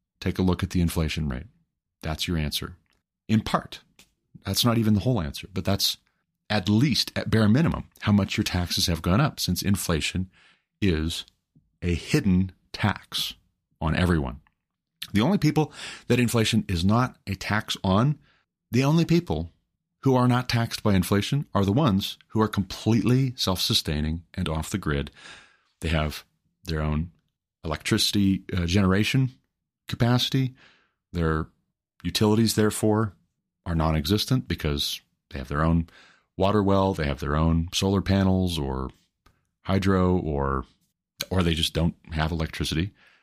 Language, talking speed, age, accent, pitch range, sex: English, 145 wpm, 40-59, American, 85-110 Hz, male